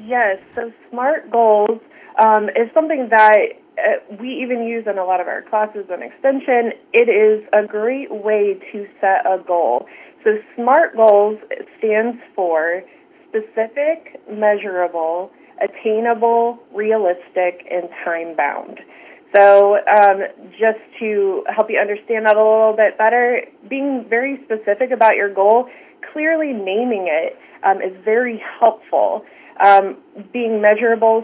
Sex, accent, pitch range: female, American, 195-240 Hz